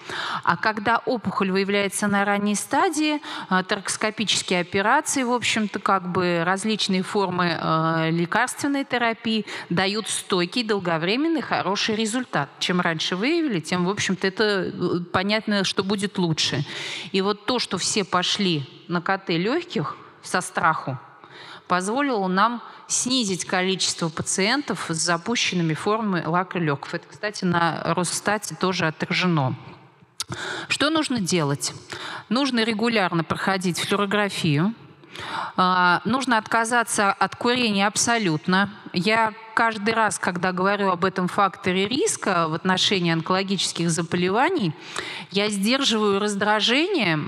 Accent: native